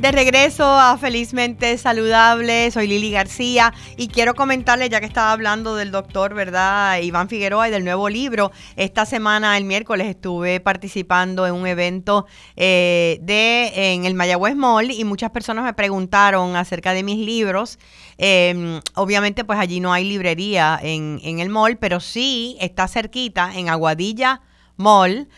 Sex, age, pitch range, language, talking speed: female, 30-49, 180-225 Hz, Spanish, 155 wpm